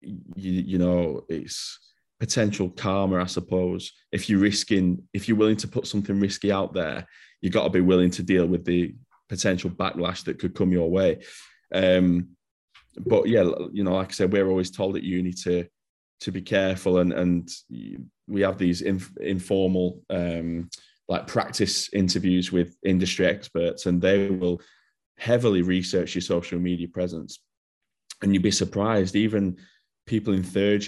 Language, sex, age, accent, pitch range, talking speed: English, male, 20-39, British, 90-95 Hz, 165 wpm